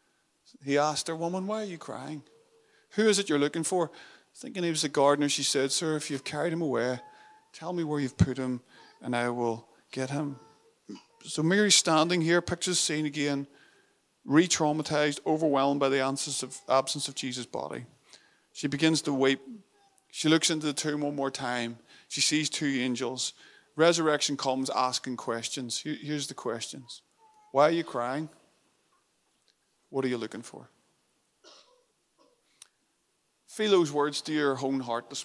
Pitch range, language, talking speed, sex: 130-165 Hz, English, 160 wpm, male